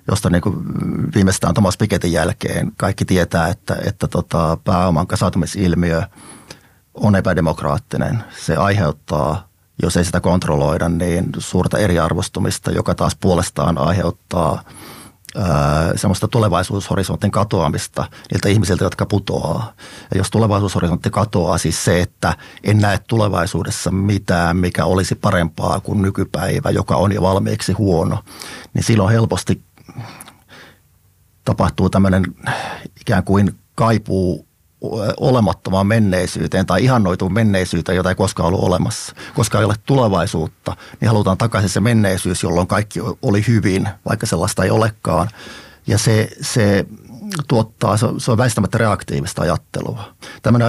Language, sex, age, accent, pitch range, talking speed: Finnish, male, 30-49, native, 90-110 Hz, 120 wpm